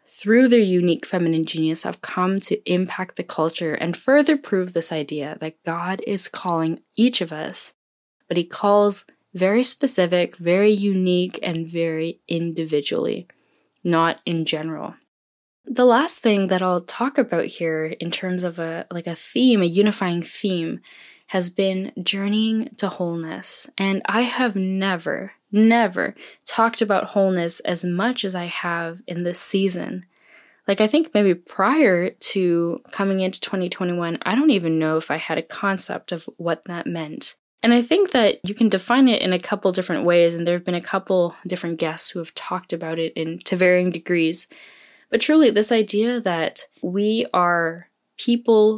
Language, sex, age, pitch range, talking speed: English, female, 10-29, 170-210 Hz, 165 wpm